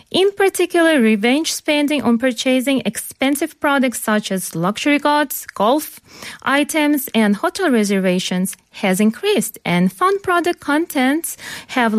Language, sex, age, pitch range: Korean, female, 40-59, 205-300 Hz